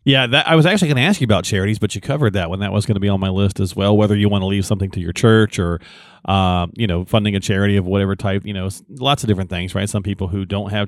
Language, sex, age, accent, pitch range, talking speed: English, male, 40-59, American, 100-130 Hz, 315 wpm